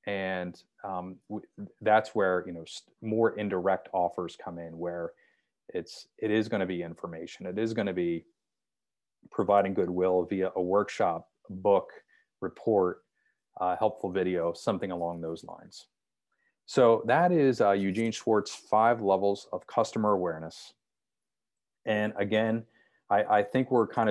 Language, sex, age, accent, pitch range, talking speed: English, male, 30-49, American, 90-115 Hz, 135 wpm